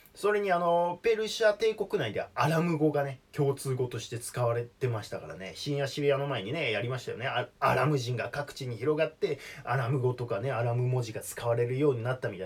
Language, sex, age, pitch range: Japanese, male, 20-39, 120-195 Hz